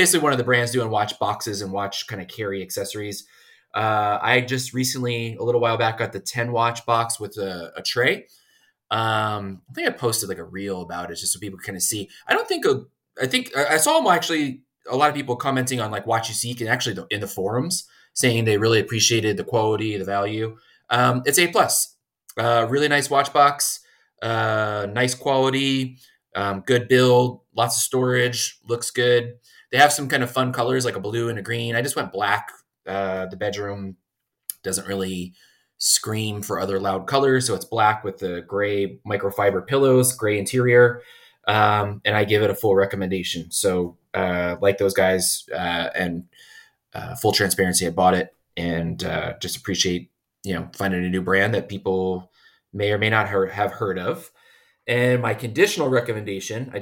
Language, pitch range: English, 100-125 Hz